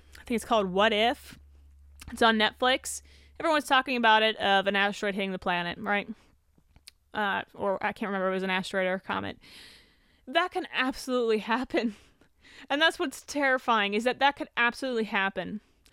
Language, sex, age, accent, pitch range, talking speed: English, female, 20-39, American, 205-260 Hz, 175 wpm